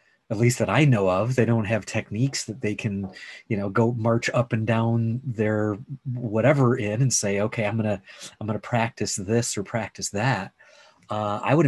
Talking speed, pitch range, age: 195 wpm, 95-120 Hz, 30-49